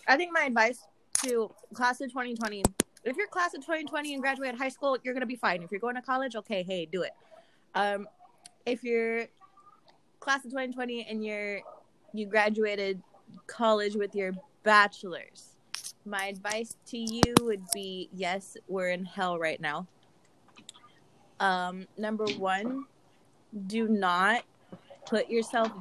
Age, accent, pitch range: 20-39, American, 190-245 Hz